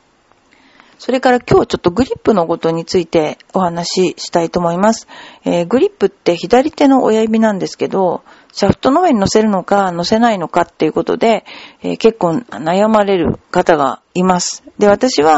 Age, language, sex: 40-59, Japanese, female